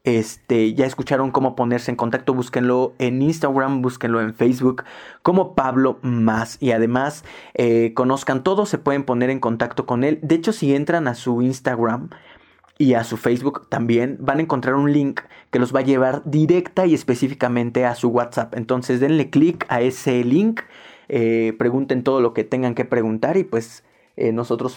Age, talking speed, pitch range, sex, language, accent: 20-39, 180 wpm, 120-140 Hz, male, Spanish, Mexican